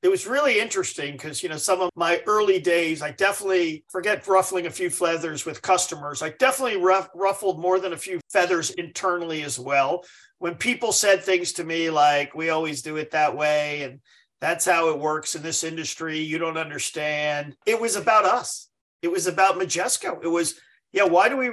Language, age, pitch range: English, 50-69, 155-190 Hz